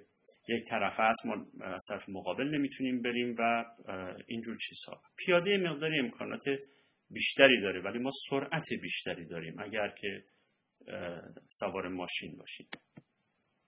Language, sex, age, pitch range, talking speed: English, male, 40-59, 105-155 Hz, 120 wpm